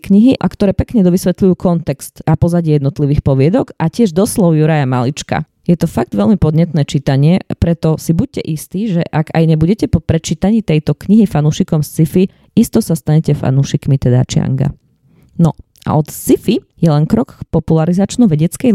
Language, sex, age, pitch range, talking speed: Slovak, female, 20-39, 155-200 Hz, 160 wpm